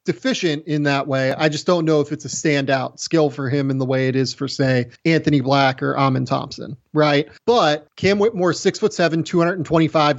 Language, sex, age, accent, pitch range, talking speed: English, male, 30-49, American, 145-190 Hz, 205 wpm